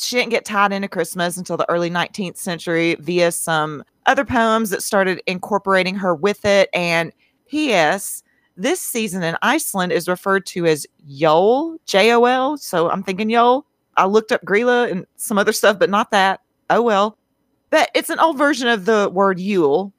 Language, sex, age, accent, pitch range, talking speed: English, female, 40-59, American, 180-235 Hz, 175 wpm